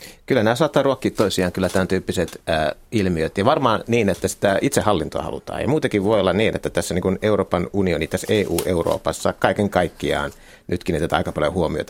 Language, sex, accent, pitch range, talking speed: Finnish, male, native, 80-100 Hz, 180 wpm